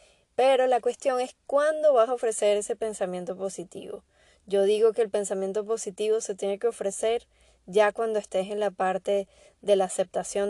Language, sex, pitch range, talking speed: Spanish, female, 190-220 Hz, 170 wpm